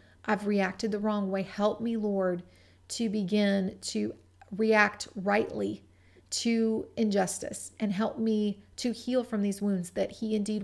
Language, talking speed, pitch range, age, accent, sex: English, 145 wpm, 190-225 Hz, 30-49, American, female